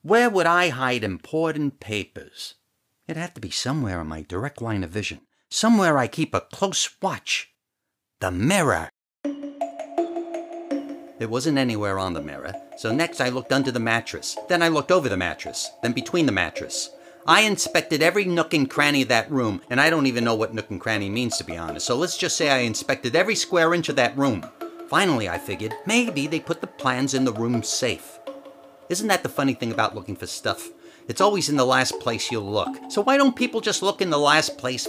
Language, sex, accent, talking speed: English, male, American, 210 wpm